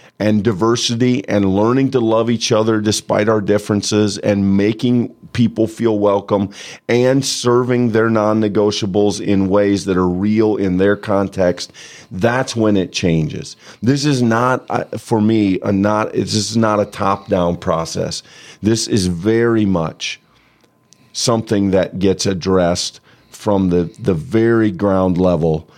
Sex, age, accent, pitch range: male, 40-59, American, 90-110 Hz